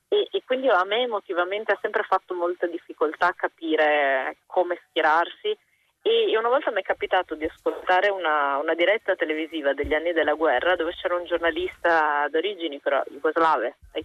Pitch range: 160-195 Hz